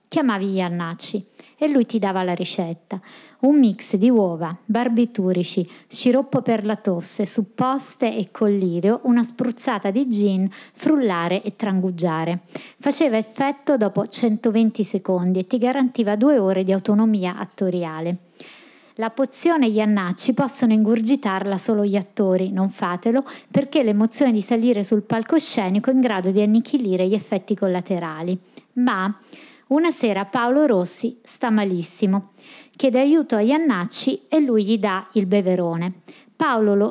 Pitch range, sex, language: 195-255 Hz, female, Italian